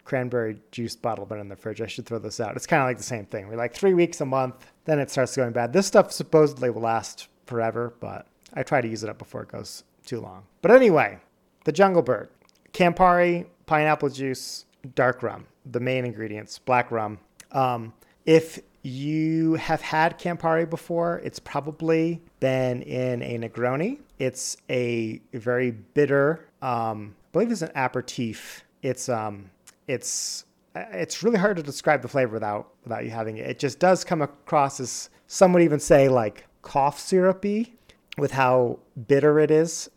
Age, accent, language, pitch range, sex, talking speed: 30-49, American, English, 120-160 Hz, male, 180 wpm